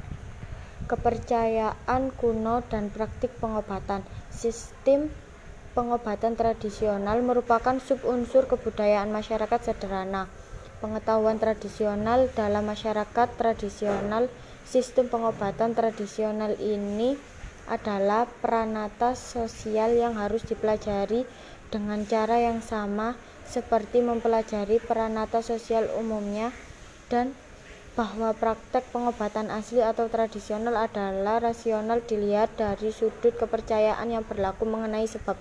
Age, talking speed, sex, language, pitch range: 20-39, 90 wpm, female, Indonesian, 210-235 Hz